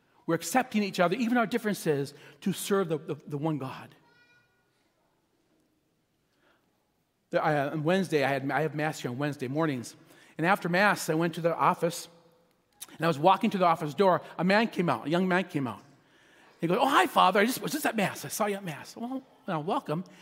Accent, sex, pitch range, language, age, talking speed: American, male, 155-200 Hz, English, 40-59, 200 wpm